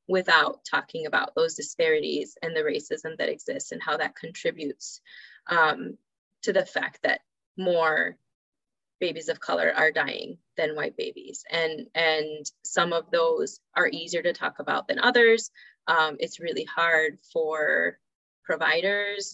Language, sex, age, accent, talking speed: English, female, 20-39, American, 145 wpm